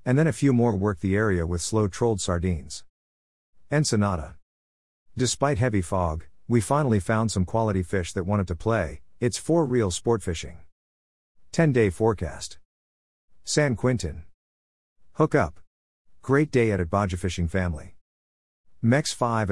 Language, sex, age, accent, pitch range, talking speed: English, male, 50-69, American, 85-115 Hz, 145 wpm